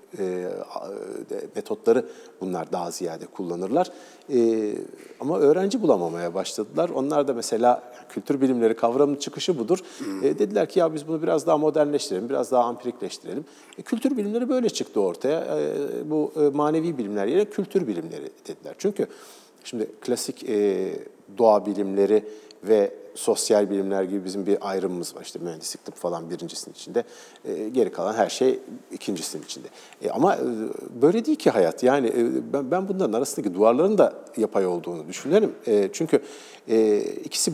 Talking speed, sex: 145 wpm, male